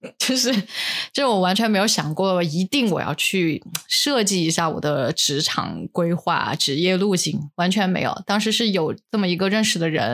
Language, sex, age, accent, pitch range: Chinese, female, 20-39, native, 165-200 Hz